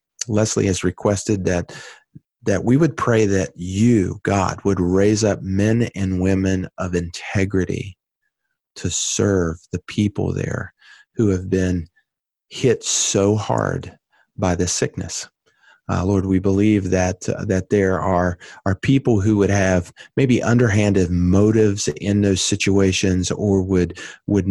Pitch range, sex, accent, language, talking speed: 90-105 Hz, male, American, English, 135 wpm